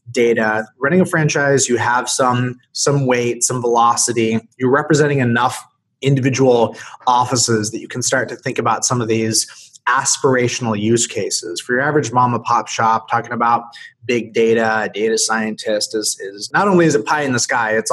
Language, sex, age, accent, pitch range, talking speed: English, male, 30-49, American, 110-135 Hz, 180 wpm